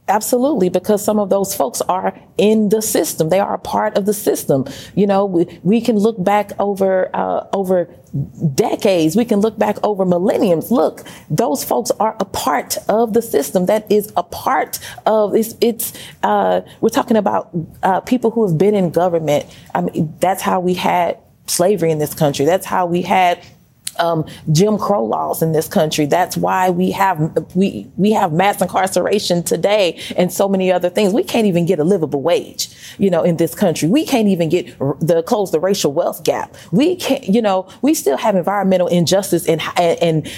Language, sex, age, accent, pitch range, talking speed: English, female, 30-49, American, 175-230 Hz, 195 wpm